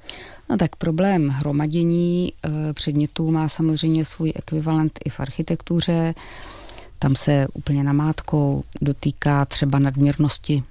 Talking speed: 105 wpm